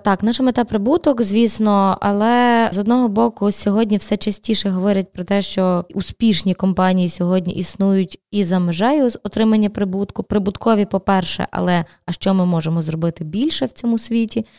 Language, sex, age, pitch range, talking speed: Ukrainian, female, 20-39, 185-225 Hz, 160 wpm